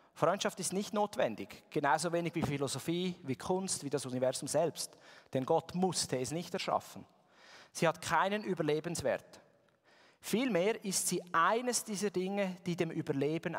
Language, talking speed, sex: German, 145 wpm, male